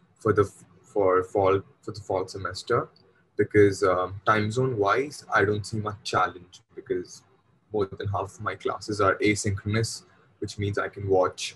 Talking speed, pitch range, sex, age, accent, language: 165 wpm, 95-110 Hz, male, 20-39, Indian, English